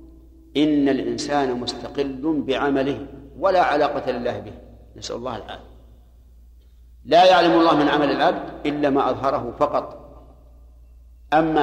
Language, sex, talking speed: Arabic, male, 115 wpm